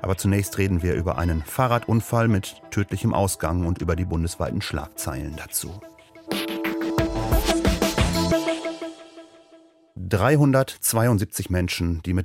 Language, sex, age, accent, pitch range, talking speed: German, male, 40-59, German, 95-115 Hz, 100 wpm